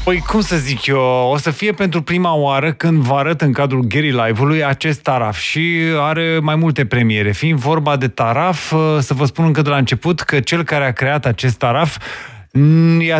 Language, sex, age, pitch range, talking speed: Romanian, male, 30-49, 130-160 Hz, 205 wpm